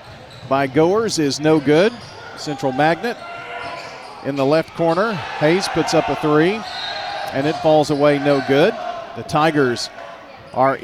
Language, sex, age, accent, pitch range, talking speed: English, male, 40-59, American, 135-165 Hz, 140 wpm